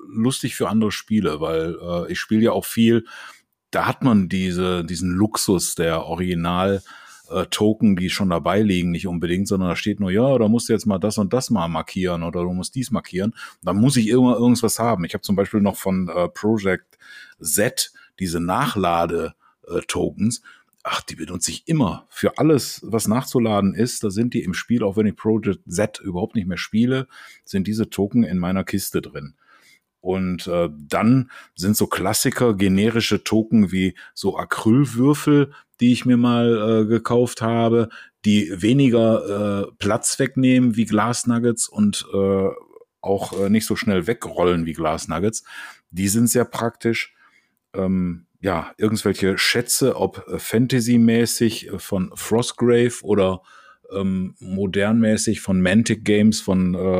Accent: German